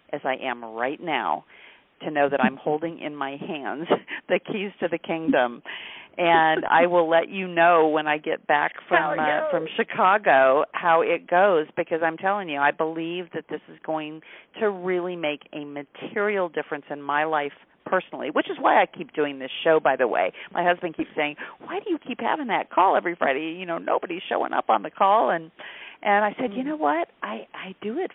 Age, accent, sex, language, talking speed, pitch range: 40-59, American, female, English, 210 wpm, 150-205 Hz